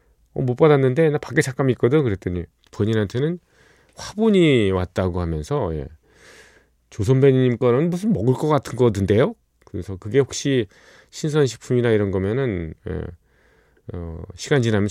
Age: 40-59